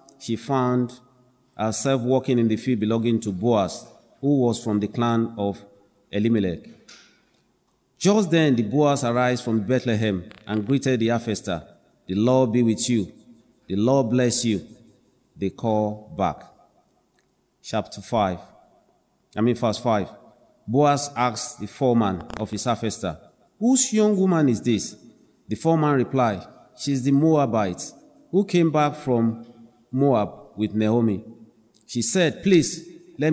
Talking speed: 135 wpm